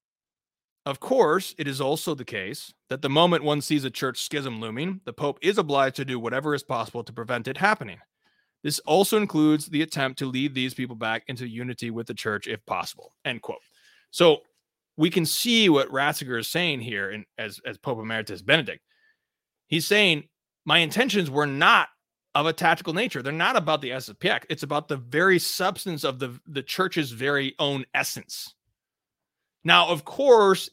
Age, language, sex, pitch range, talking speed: 30-49, English, male, 140-195 Hz, 180 wpm